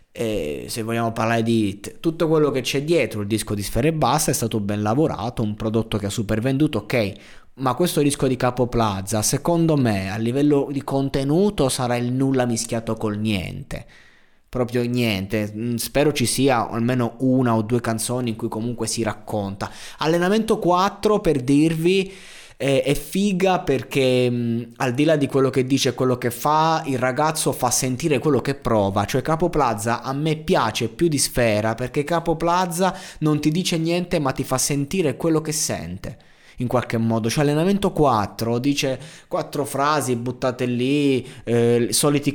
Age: 20-39